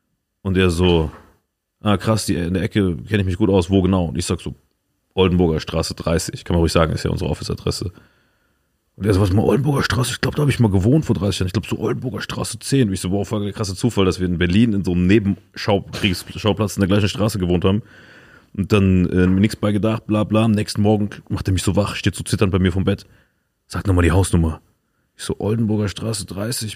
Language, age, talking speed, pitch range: German, 30-49, 250 wpm, 90-115 Hz